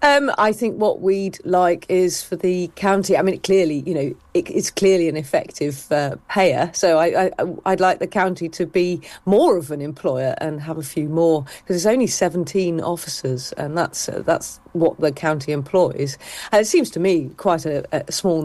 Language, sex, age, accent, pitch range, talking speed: English, female, 40-59, British, 155-200 Hz, 205 wpm